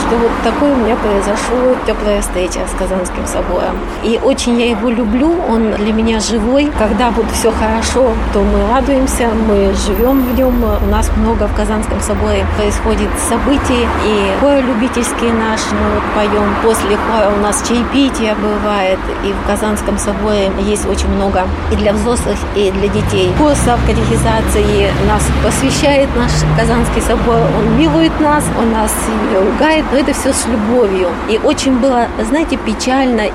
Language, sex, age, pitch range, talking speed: Russian, female, 30-49, 210-250 Hz, 155 wpm